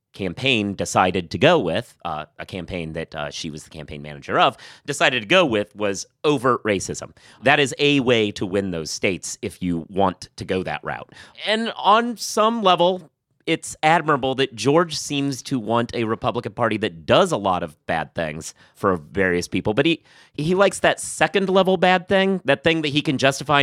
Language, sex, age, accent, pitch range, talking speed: English, male, 30-49, American, 105-155 Hz, 195 wpm